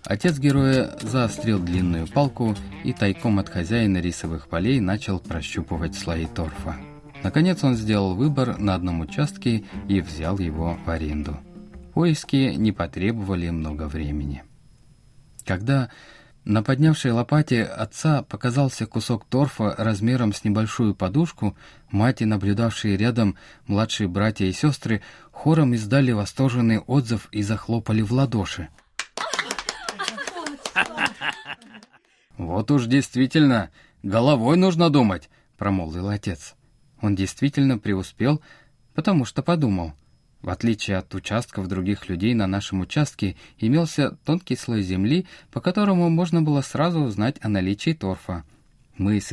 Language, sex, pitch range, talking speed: Russian, male, 95-135 Hz, 120 wpm